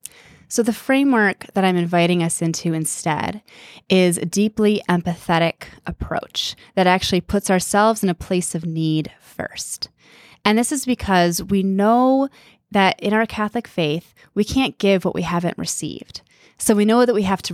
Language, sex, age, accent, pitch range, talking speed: English, female, 20-39, American, 165-195 Hz, 170 wpm